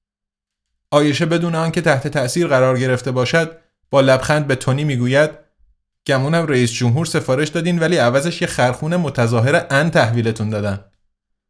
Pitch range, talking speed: 120-170 Hz, 135 wpm